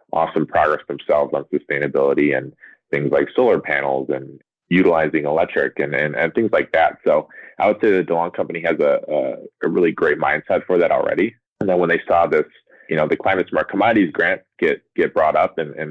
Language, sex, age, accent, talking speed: English, male, 30-49, American, 205 wpm